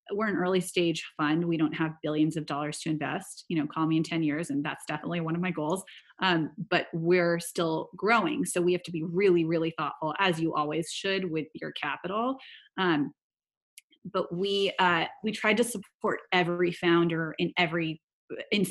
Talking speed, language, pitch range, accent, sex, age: 190 wpm, English, 160-180 Hz, American, female, 30-49